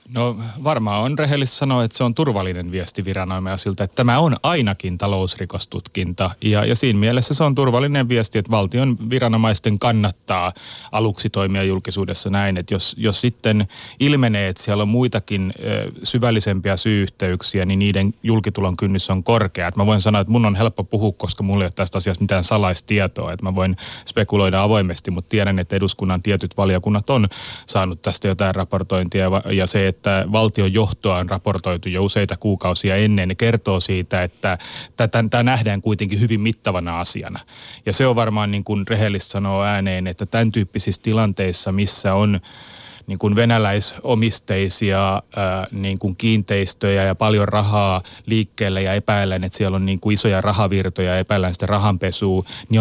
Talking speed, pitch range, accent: 160 wpm, 95-110 Hz, native